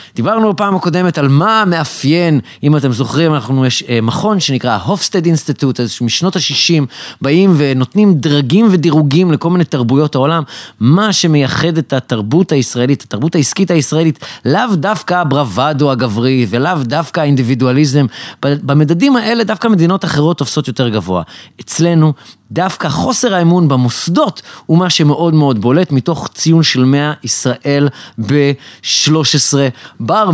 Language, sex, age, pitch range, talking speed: Hebrew, male, 30-49, 130-165 Hz, 130 wpm